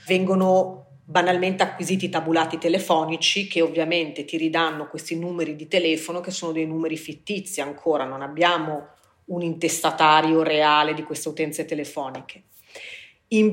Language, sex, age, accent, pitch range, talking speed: Italian, female, 30-49, native, 155-175 Hz, 130 wpm